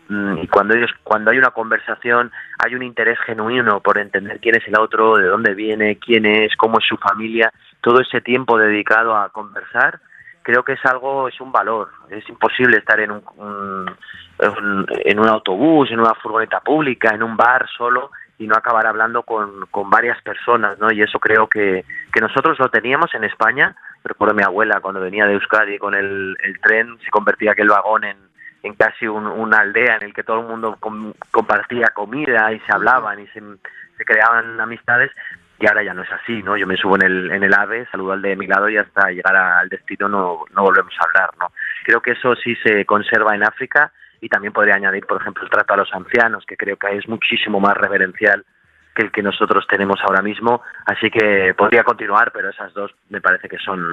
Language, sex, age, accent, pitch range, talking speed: Spanish, male, 30-49, Spanish, 100-115 Hz, 210 wpm